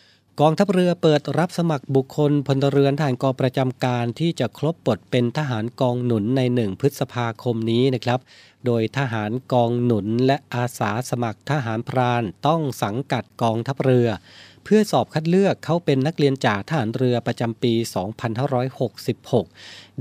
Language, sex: Thai, male